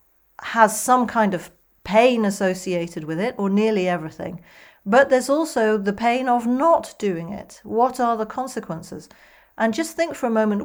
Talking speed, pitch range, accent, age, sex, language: 170 wpm, 180-235 Hz, British, 40-59, female, English